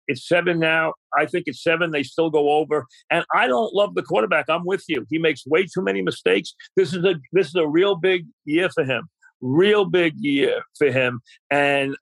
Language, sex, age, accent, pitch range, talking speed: English, male, 50-69, American, 140-175 Hz, 215 wpm